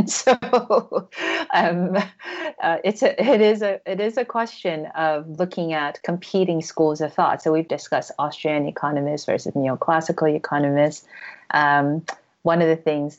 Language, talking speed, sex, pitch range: English, 145 wpm, female, 145-170 Hz